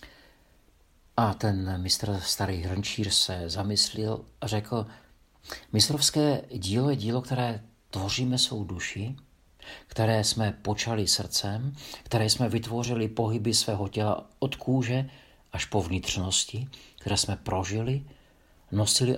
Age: 50-69